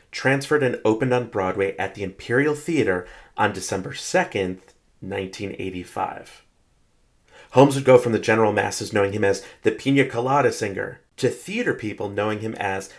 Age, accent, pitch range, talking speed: 30-49, American, 100-135 Hz, 150 wpm